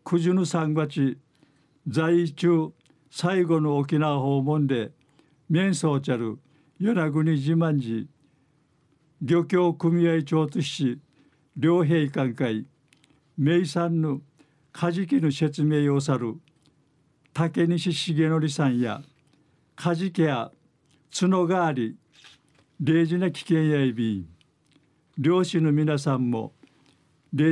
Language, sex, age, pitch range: Japanese, male, 50-69, 140-160 Hz